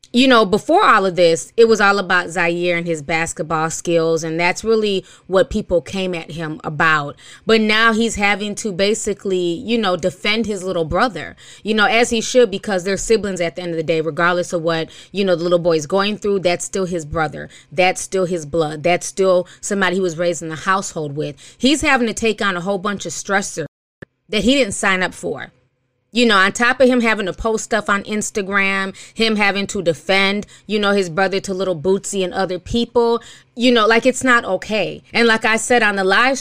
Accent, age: American, 20-39